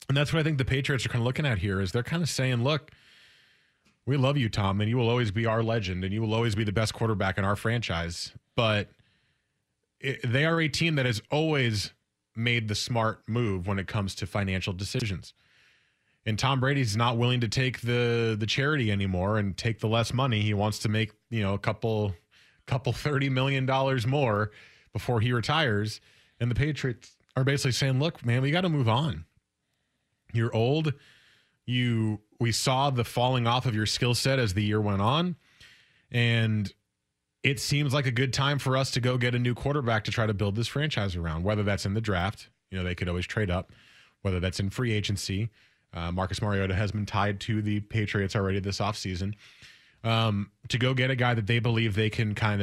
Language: English